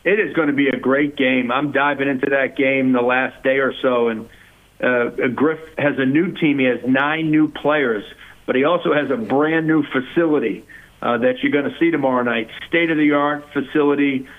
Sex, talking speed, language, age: male, 195 wpm, English, 50-69